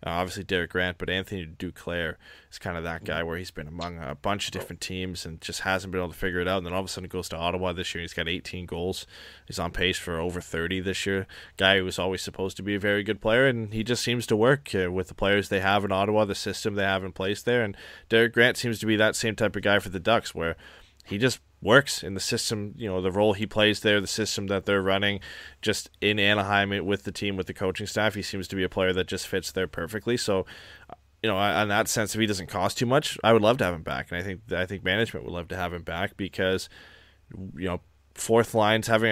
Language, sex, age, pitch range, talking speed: English, male, 20-39, 90-105 Hz, 270 wpm